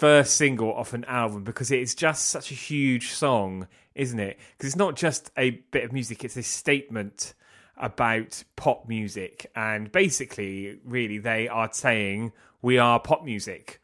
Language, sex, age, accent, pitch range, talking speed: English, male, 30-49, British, 110-140 Hz, 165 wpm